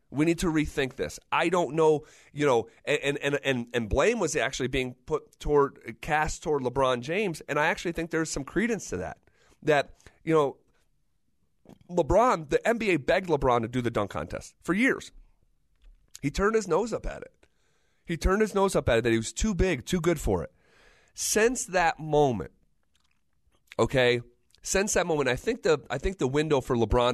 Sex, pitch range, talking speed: male, 115-175 Hz, 190 wpm